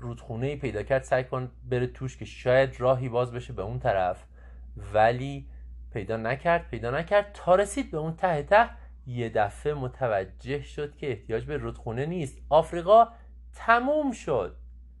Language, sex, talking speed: Persian, male, 150 wpm